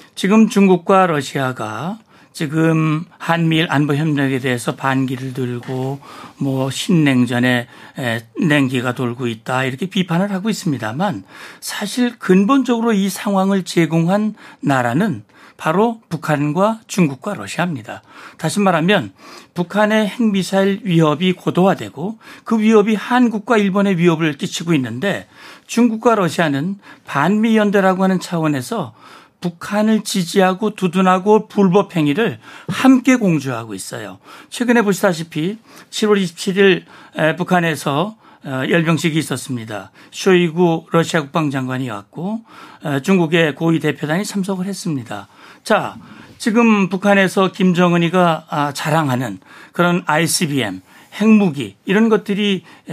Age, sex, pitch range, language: 60-79, male, 145-205 Hz, Korean